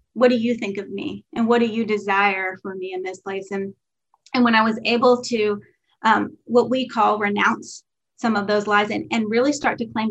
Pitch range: 210-245 Hz